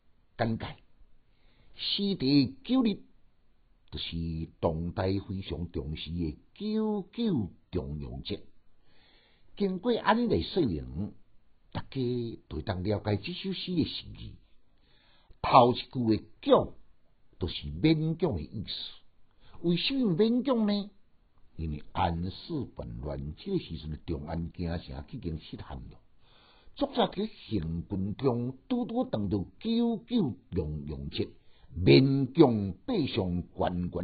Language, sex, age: Chinese, male, 60-79